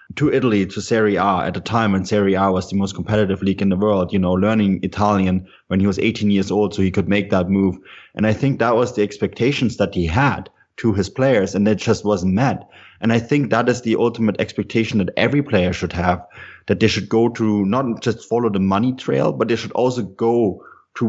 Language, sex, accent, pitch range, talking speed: English, male, German, 100-120 Hz, 235 wpm